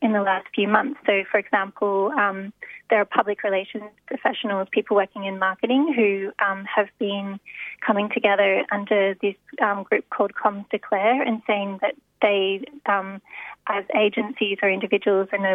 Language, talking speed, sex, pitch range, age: English, 160 wpm, female, 195-215 Hz, 30-49